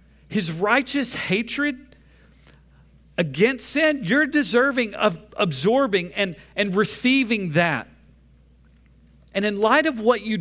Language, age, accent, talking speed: English, 40-59, American, 110 wpm